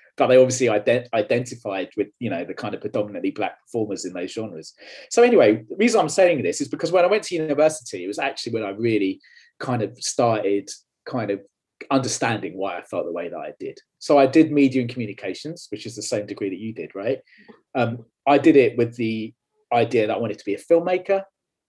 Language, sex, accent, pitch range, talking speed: English, male, British, 115-145 Hz, 220 wpm